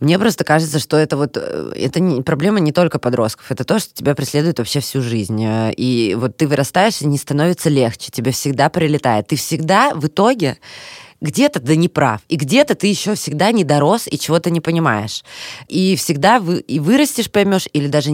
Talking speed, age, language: 185 wpm, 20-39, Russian